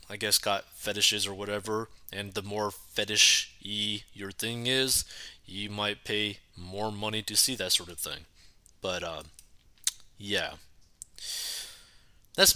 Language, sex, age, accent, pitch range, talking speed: English, male, 20-39, American, 100-130 Hz, 135 wpm